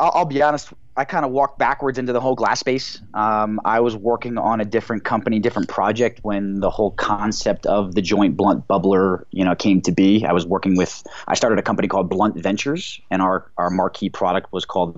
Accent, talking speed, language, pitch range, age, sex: American, 220 wpm, English, 105-135 Hz, 30-49, male